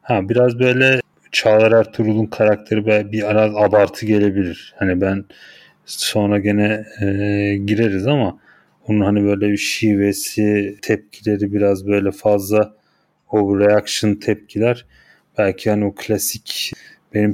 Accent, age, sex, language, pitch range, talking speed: native, 30-49, male, Turkish, 100-120 Hz, 120 wpm